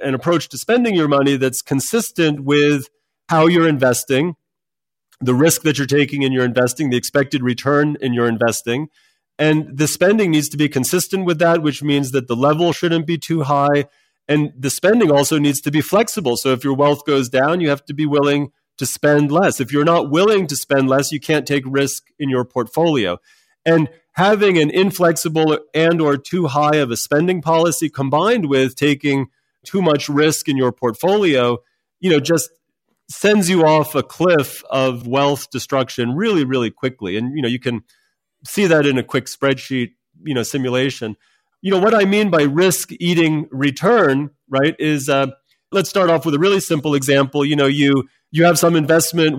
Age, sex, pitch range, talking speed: 40-59, male, 135-165 Hz, 190 wpm